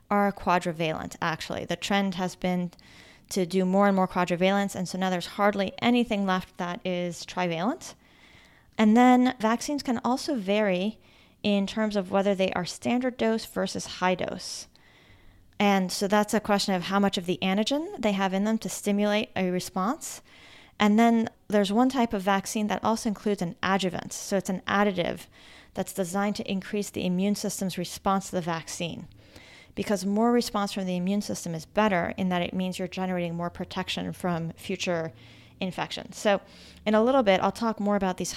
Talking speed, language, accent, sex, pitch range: 180 wpm, English, American, female, 180-210 Hz